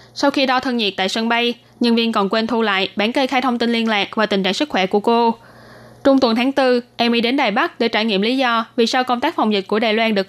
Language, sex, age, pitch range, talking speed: Vietnamese, female, 10-29, 210-255 Hz, 295 wpm